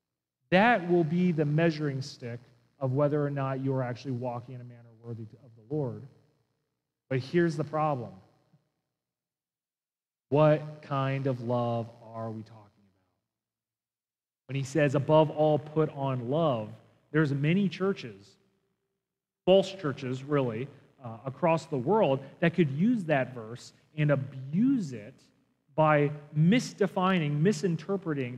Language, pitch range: English, 135-175 Hz